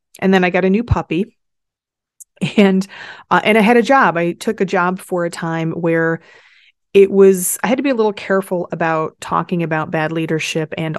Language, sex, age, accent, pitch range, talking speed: English, female, 30-49, American, 160-195 Hz, 200 wpm